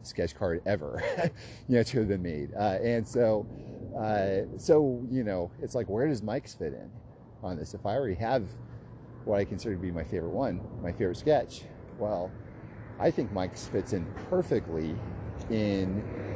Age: 40-59